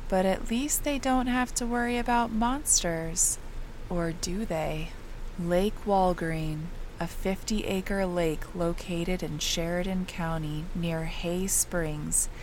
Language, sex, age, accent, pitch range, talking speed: English, female, 20-39, American, 160-200 Hz, 120 wpm